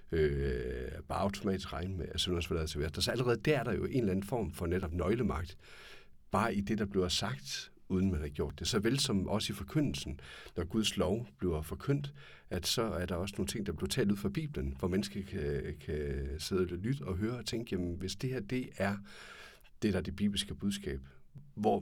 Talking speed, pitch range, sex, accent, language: 225 wpm, 75-100 Hz, male, native, Danish